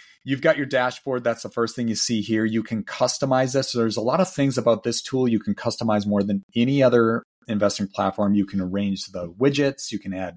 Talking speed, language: 230 wpm, English